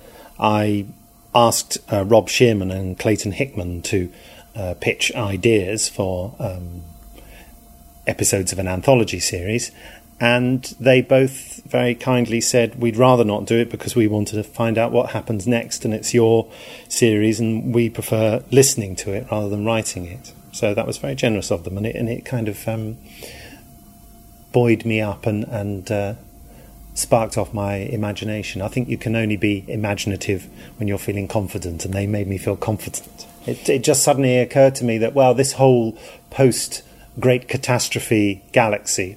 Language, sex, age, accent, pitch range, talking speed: English, male, 40-59, British, 100-120 Hz, 160 wpm